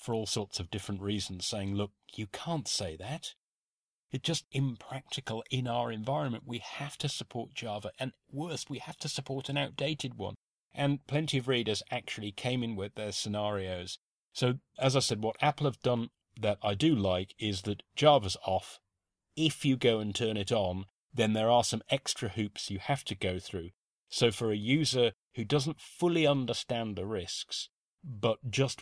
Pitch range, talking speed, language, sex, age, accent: 100-120 Hz, 185 wpm, English, male, 40-59, British